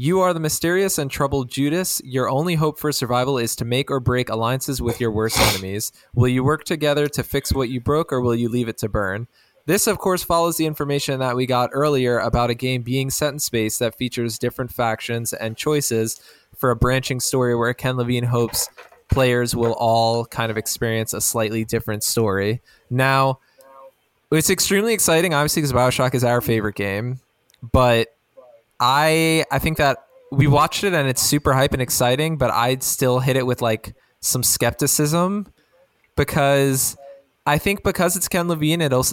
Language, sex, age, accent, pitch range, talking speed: English, male, 20-39, American, 120-155 Hz, 185 wpm